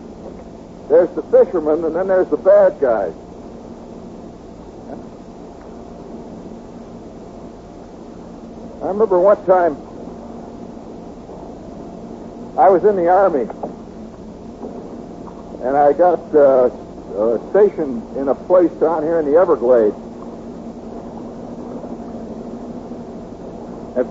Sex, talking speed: male, 80 wpm